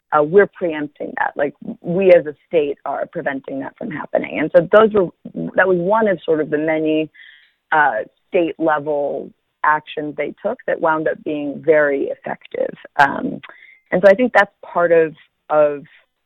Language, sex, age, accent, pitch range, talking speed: English, female, 30-49, American, 150-190 Hz, 170 wpm